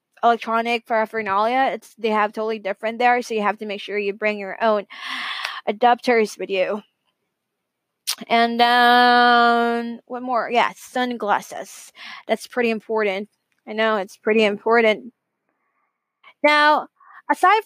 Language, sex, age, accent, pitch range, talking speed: English, female, 20-39, American, 220-280 Hz, 125 wpm